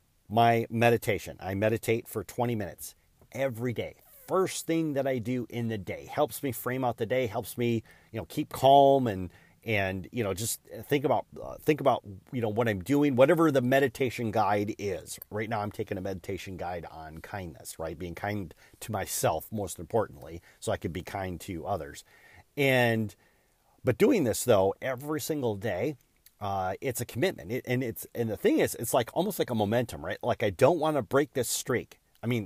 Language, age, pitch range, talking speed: English, 40-59, 105-135 Hz, 200 wpm